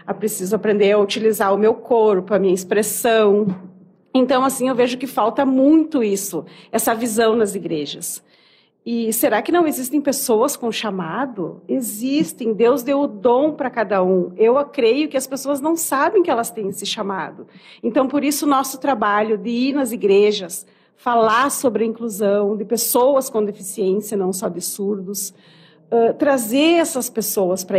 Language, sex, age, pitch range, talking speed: Portuguese, female, 40-59, 200-260 Hz, 170 wpm